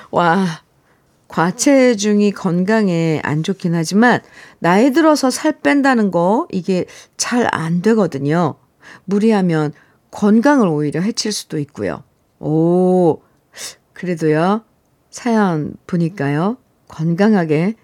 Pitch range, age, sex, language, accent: 170-265 Hz, 50-69, female, Korean, native